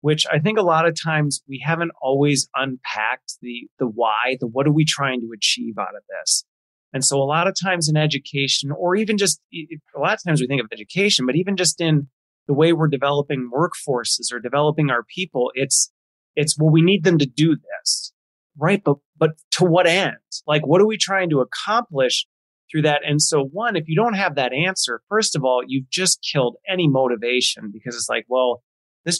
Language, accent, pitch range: English, American, 135-180 Hz